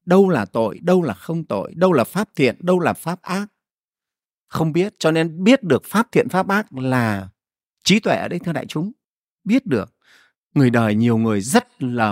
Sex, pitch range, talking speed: male, 125-195 Hz, 205 wpm